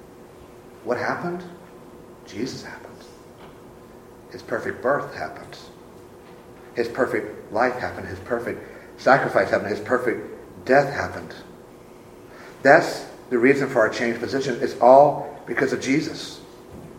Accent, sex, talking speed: American, male, 115 wpm